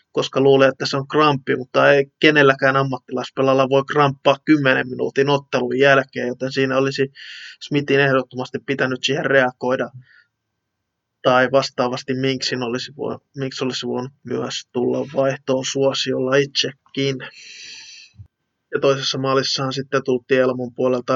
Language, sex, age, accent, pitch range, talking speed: Finnish, male, 20-39, native, 125-135 Hz, 120 wpm